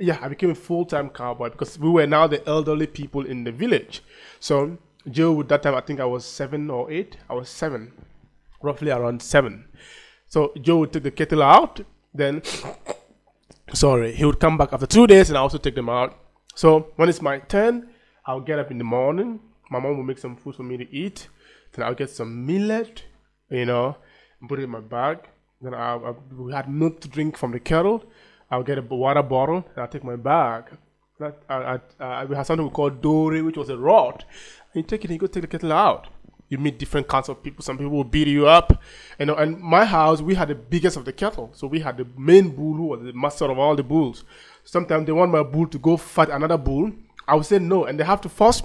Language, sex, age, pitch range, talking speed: English, male, 20-39, 135-170 Hz, 235 wpm